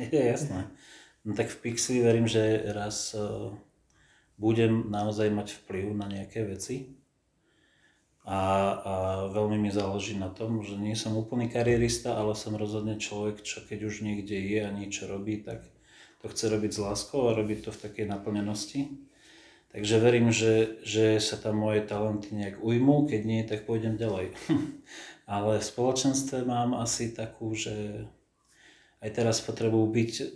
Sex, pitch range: male, 105-115 Hz